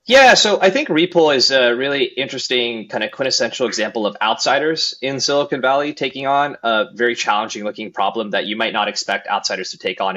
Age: 20-39